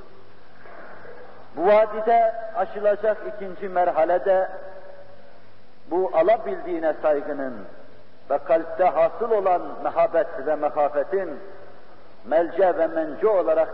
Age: 60-79